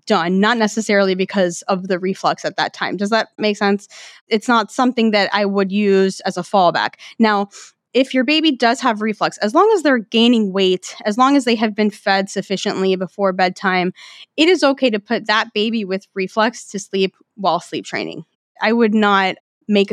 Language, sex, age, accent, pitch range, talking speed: English, female, 20-39, American, 190-225 Hz, 195 wpm